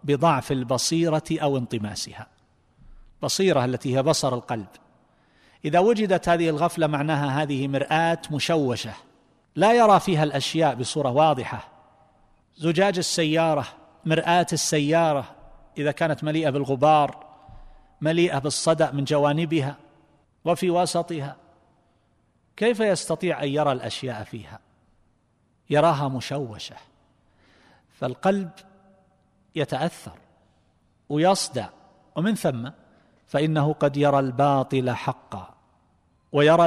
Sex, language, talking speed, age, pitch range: male, Arabic, 90 wpm, 50-69, 130-165 Hz